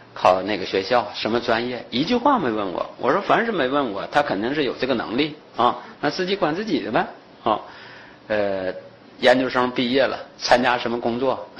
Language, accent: Chinese, native